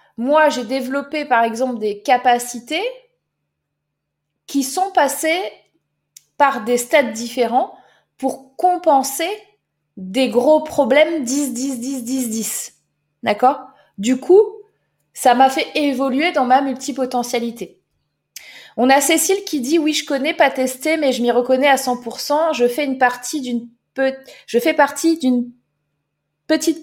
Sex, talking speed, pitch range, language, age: female, 135 wpm, 230-295 Hz, French, 20-39